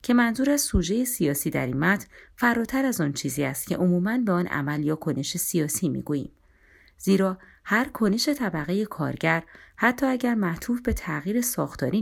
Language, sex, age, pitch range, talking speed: Persian, female, 30-49, 150-215 Hz, 165 wpm